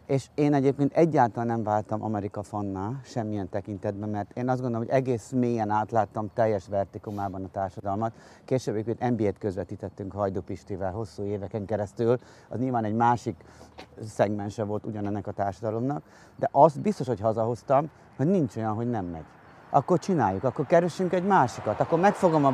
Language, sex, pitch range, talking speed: Hungarian, male, 100-130 Hz, 160 wpm